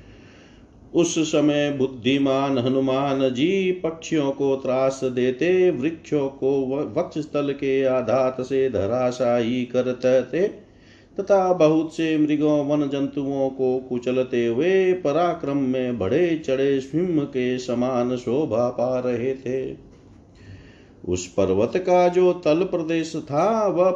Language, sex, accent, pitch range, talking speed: Hindi, male, native, 125-160 Hz, 110 wpm